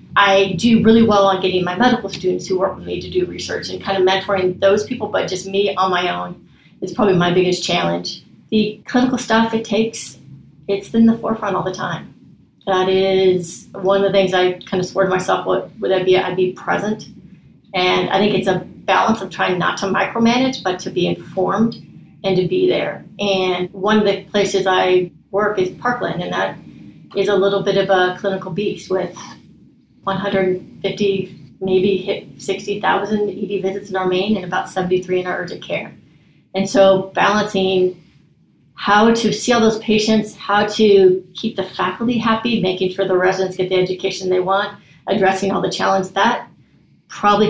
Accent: American